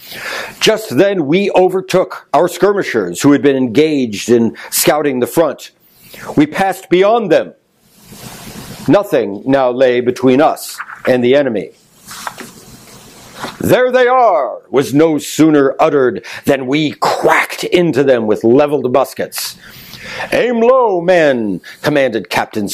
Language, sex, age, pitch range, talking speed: English, male, 60-79, 140-200 Hz, 120 wpm